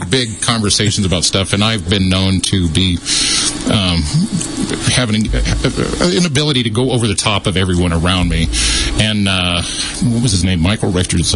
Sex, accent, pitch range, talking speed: male, American, 90-115 Hz, 165 wpm